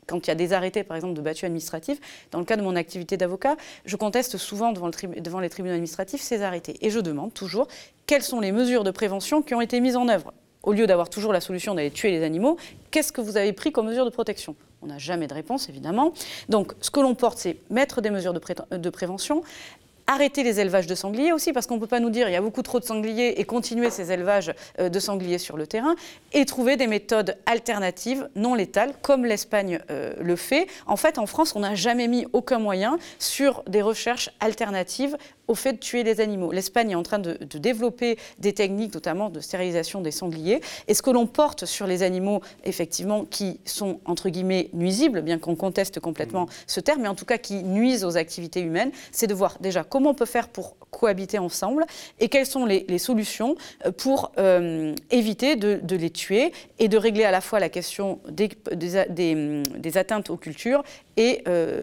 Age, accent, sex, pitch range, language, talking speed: 30-49, French, female, 180-245 Hz, French, 215 wpm